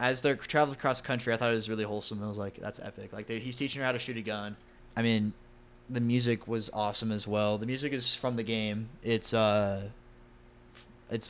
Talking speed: 230 wpm